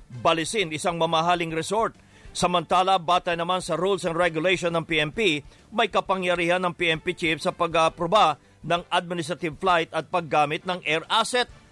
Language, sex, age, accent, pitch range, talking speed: English, male, 50-69, Filipino, 165-185 Hz, 150 wpm